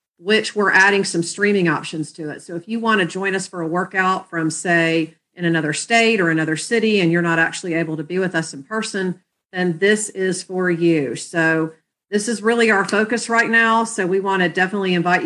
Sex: female